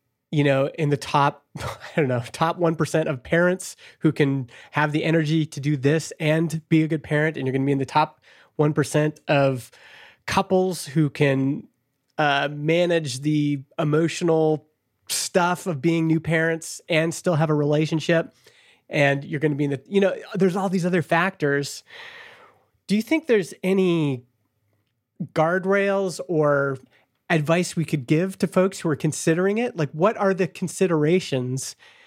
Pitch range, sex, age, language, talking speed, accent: 145-170 Hz, male, 30-49, English, 165 wpm, American